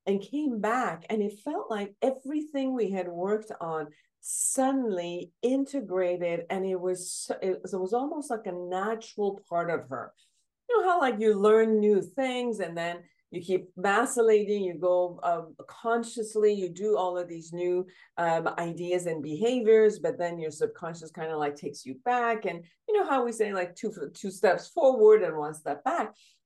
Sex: female